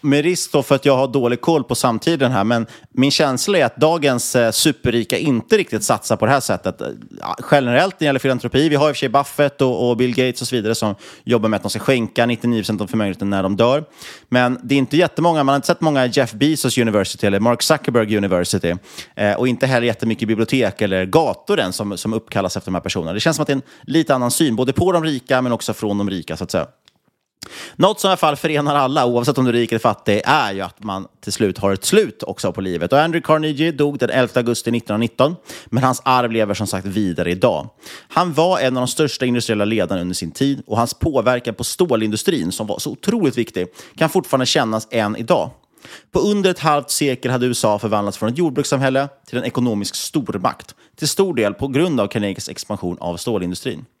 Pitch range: 110-140 Hz